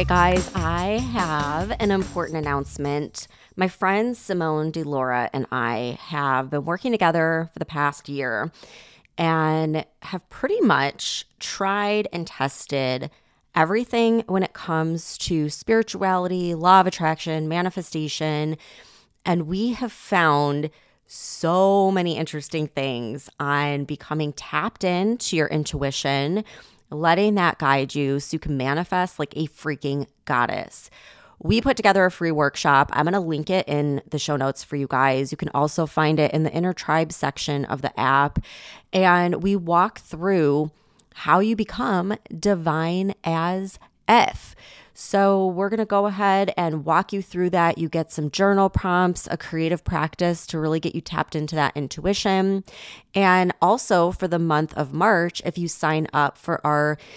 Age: 20-39